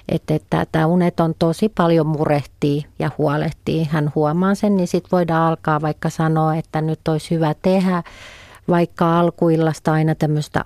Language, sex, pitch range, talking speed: Finnish, female, 150-180 Hz, 160 wpm